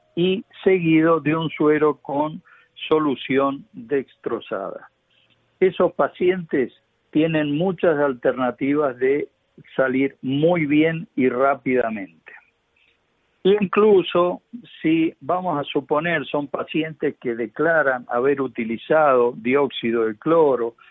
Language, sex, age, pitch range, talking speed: Spanish, male, 60-79, 135-165 Hz, 95 wpm